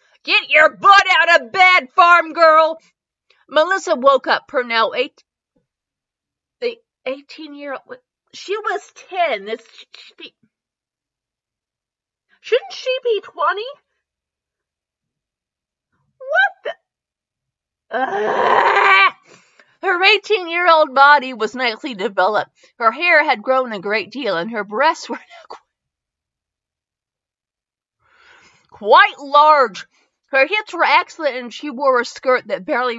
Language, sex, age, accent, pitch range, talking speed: English, female, 40-59, American, 230-365 Hz, 100 wpm